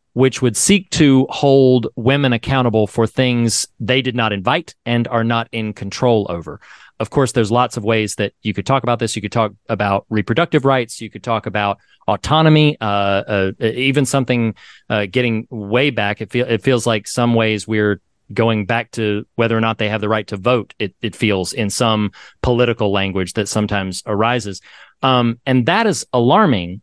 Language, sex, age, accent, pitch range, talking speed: English, male, 40-59, American, 105-130 Hz, 190 wpm